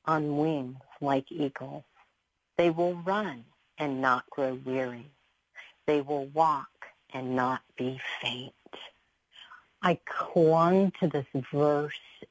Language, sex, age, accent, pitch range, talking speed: English, female, 50-69, American, 140-175 Hz, 110 wpm